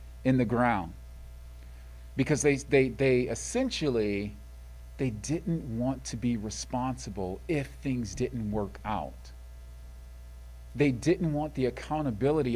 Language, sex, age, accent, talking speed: English, male, 40-59, American, 110 wpm